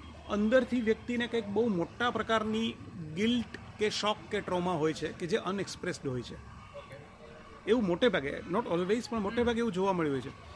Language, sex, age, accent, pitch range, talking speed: Gujarati, male, 40-59, native, 160-220 Hz, 165 wpm